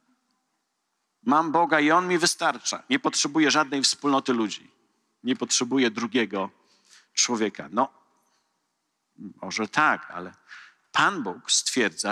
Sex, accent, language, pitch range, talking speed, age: male, native, Polish, 115-155 Hz, 110 wpm, 50-69